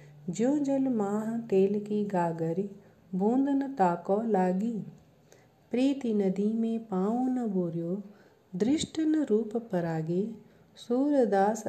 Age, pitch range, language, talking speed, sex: 40-59, 180-235 Hz, Hindi, 100 wpm, female